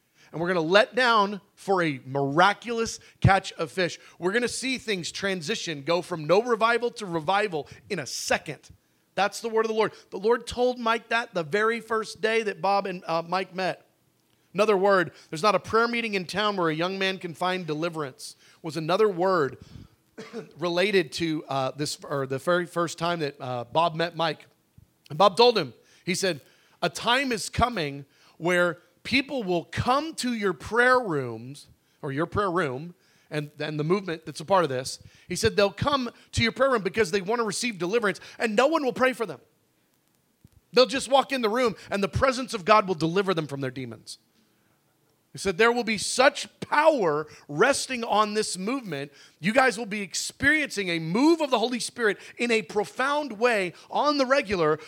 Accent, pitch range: American, 165-230 Hz